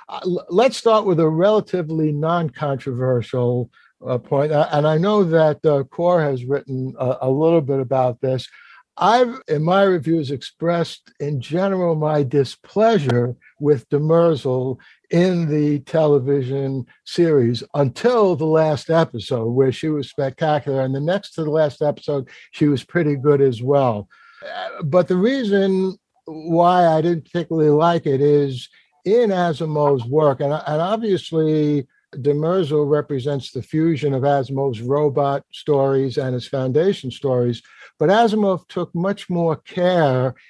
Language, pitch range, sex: English, 135-170 Hz, male